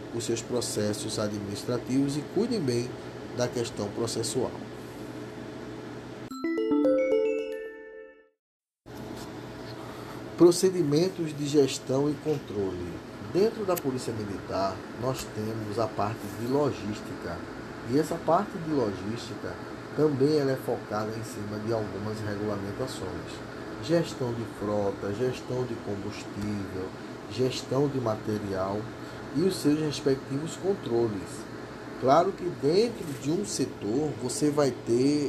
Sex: male